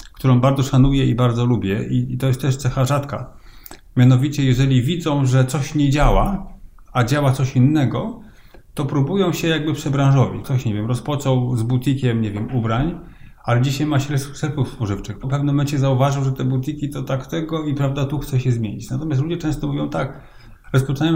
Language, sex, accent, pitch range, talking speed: Polish, male, native, 130-150 Hz, 185 wpm